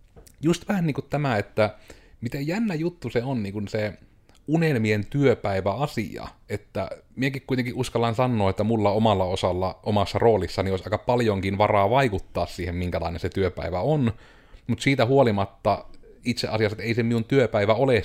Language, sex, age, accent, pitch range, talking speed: Finnish, male, 30-49, native, 95-115 Hz, 155 wpm